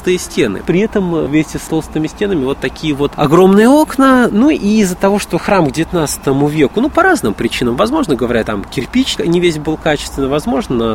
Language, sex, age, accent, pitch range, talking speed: Russian, male, 20-39, native, 135-190 Hz, 185 wpm